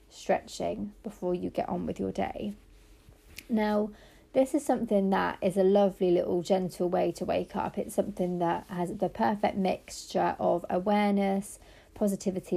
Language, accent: English, British